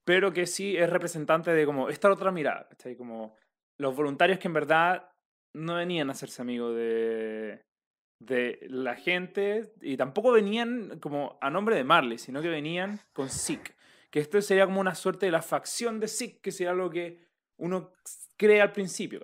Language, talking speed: Spanish, 180 wpm